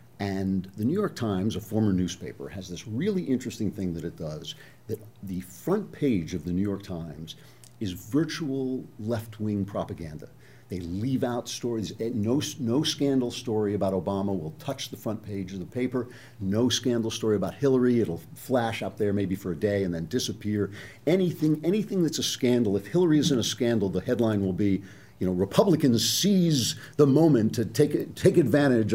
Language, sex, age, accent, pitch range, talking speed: English, male, 50-69, American, 95-130 Hz, 180 wpm